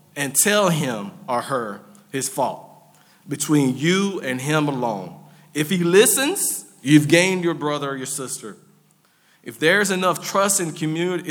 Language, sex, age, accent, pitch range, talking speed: English, male, 50-69, American, 150-190 Hz, 150 wpm